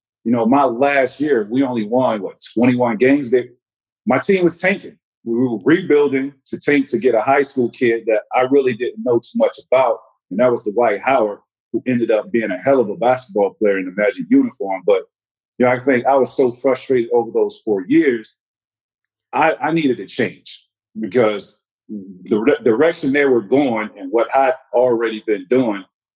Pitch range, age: 110-150 Hz, 40-59